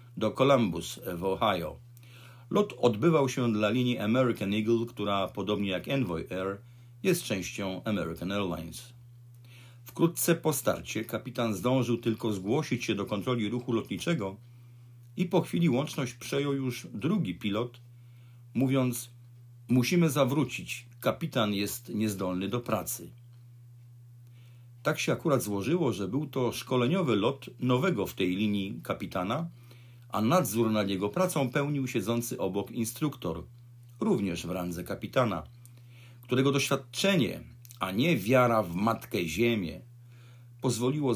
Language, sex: Polish, male